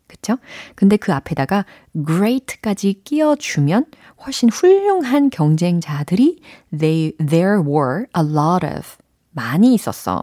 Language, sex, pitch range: Korean, female, 150-225 Hz